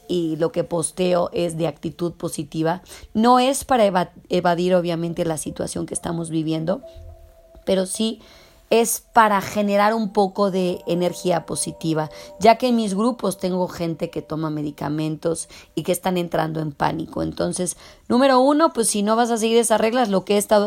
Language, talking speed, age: Spanish, 170 wpm, 30-49